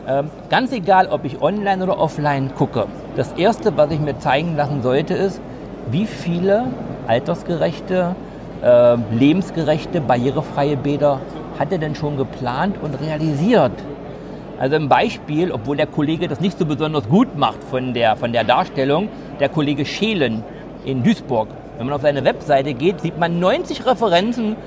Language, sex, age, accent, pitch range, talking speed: German, male, 50-69, German, 140-190 Hz, 150 wpm